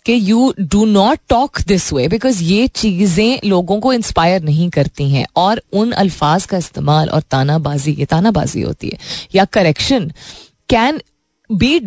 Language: Hindi